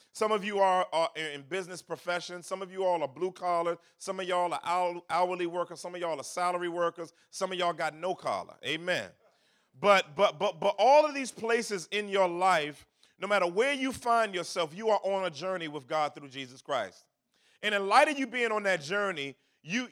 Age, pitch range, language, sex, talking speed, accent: 40-59, 175-225 Hz, English, male, 215 wpm, American